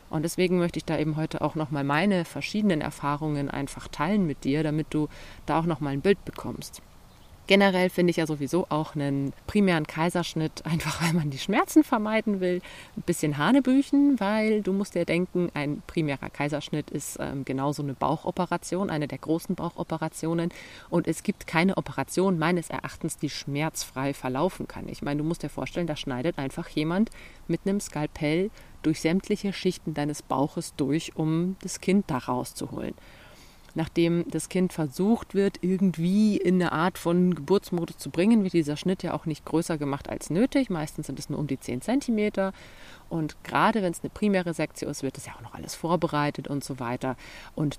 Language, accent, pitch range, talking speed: German, German, 145-185 Hz, 180 wpm